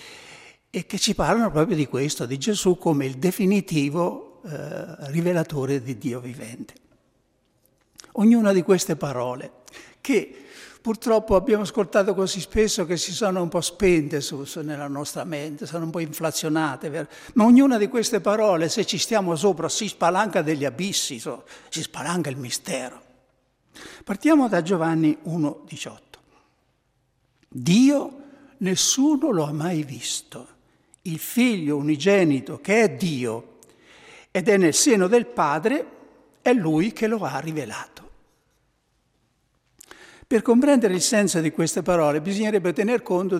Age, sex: 60-79, male